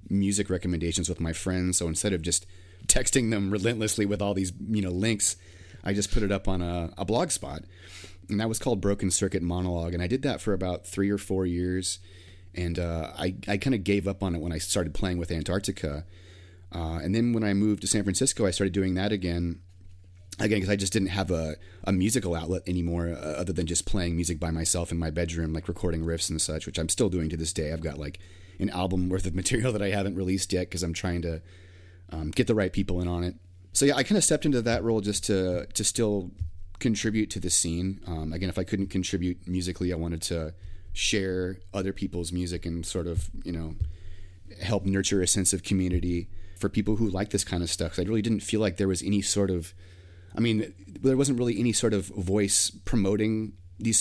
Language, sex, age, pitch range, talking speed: English, male, 30-49, 90-100 Hz, 230 wpm